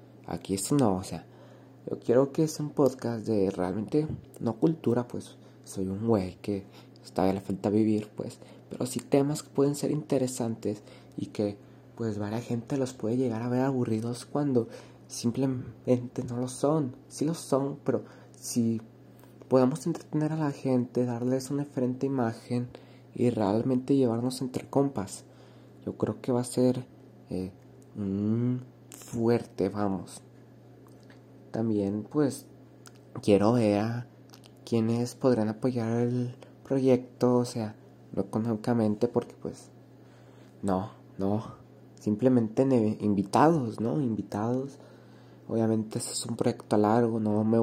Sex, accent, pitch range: male, Mexican, 110-130 Hz